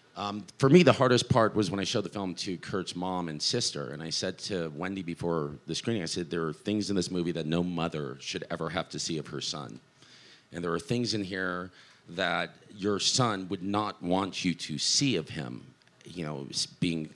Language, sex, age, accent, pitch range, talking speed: English, male, 40-59, American, 80-110 Hz, 225 wpm